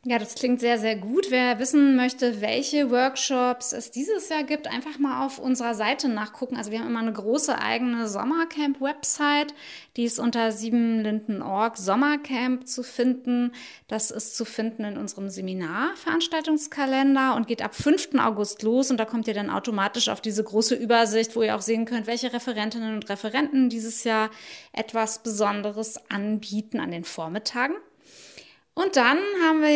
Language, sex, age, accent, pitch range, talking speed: German, female, 20-39, German, 220-265 Hz, 160 wpm